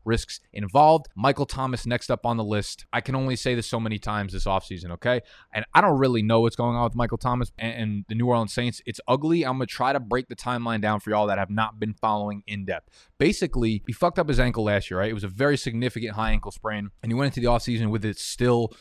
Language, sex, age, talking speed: English, male, 20-39, 260 wpm